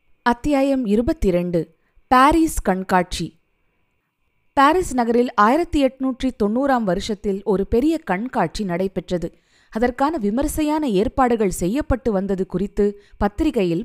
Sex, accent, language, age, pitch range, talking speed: female, native, Tamil, 20-39, 185-260 Hz, 95 wpm